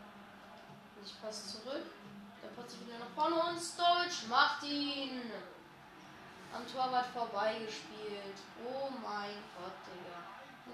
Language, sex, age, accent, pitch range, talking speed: German, female, 20-39, German, 205-270 Hz, 115 wpm